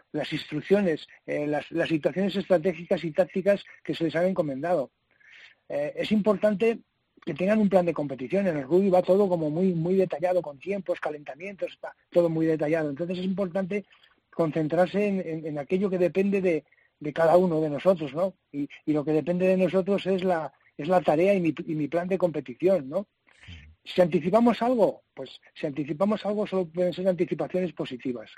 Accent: Spanish